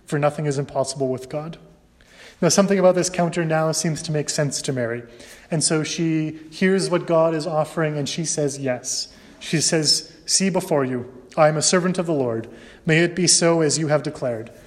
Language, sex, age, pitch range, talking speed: English, male, 30-49, 140-165 Hz, 200 wpm